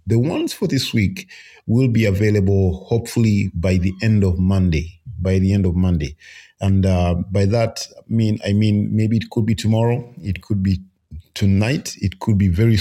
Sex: male